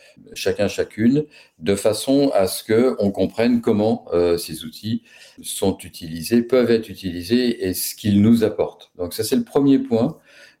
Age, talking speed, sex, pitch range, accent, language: 50-69, 170 wpm, male, 85-115 Hz, French, French